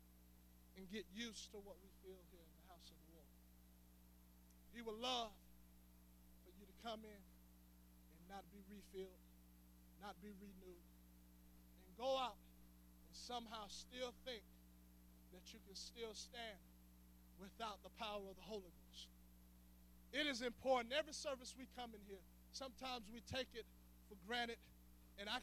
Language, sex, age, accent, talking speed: English, male, 20-39, American, 155 wpm